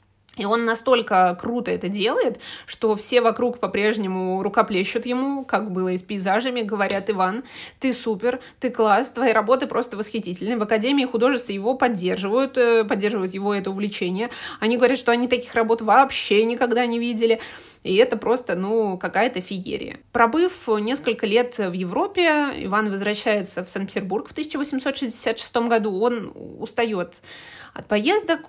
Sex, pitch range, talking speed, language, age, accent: female, 205-255 Hz, 145 wpm, Russian, 20-39, native